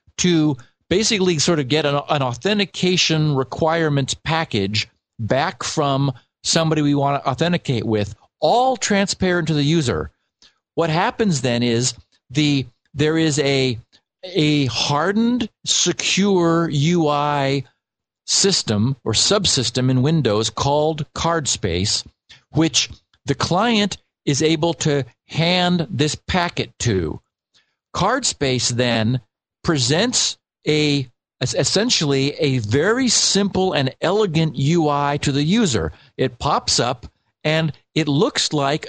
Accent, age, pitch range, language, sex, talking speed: American, 50-69, 130-170 Hz, English, male, 115 wpm